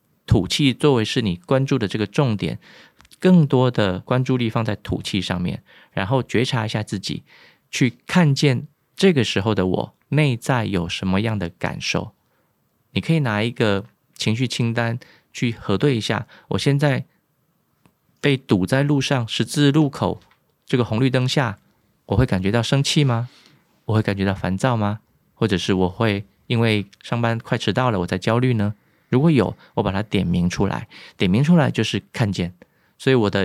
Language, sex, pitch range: Chinese, male, 100-135 Hz